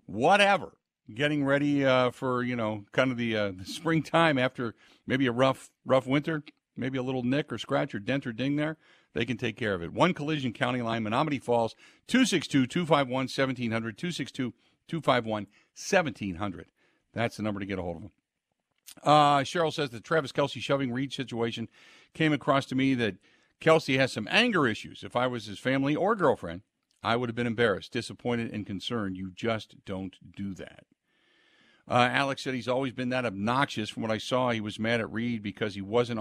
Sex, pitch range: male, 110-135 Hz